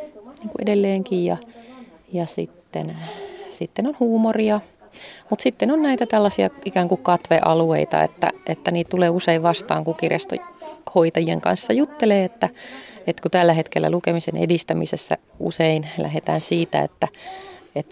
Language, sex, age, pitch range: Finnish, female, 30-49, 155-225 Hz